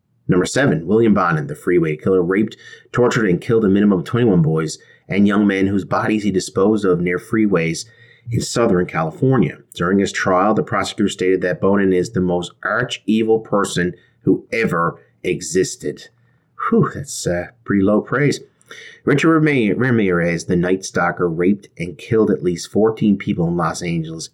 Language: English